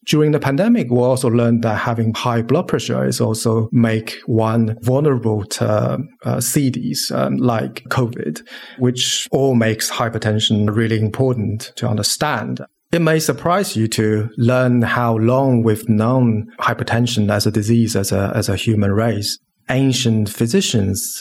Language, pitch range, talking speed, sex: English, 110-125 Hz, 150 wpm, male